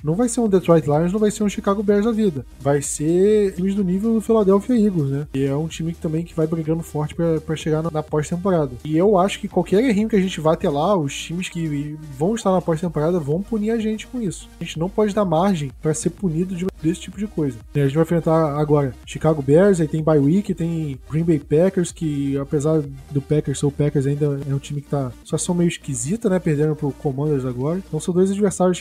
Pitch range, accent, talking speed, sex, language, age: 150-190 Hz, Brazilian, 250 wpm, male, Portuguese, 20-39